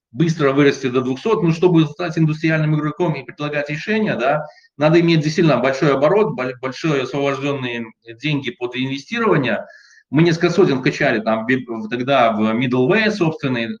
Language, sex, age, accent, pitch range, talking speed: Russian, male, 30-49, native, 135-185 Hz, 140 wpm